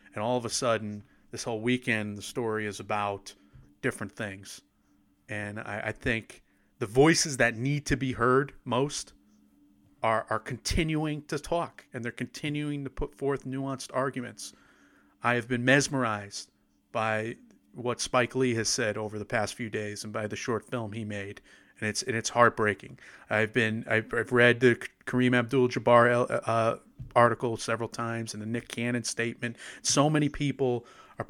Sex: male